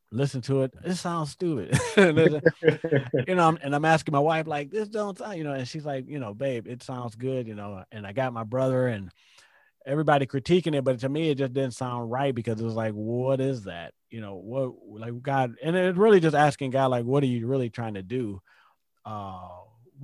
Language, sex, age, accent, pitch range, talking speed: English, male, 30-49, American, 120-150 Hz, 220 wpm